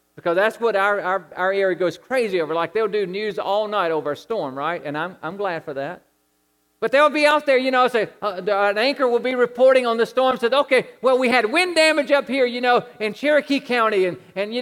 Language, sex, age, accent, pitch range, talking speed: English, male, 50-69, American, 200-285 Hz, 245 wpm